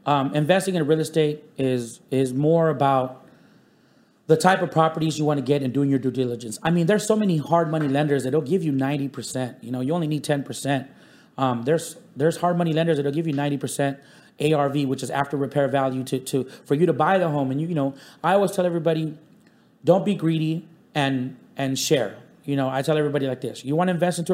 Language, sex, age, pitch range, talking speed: English, male, 30-49, 140-175 Hz, 225 wpm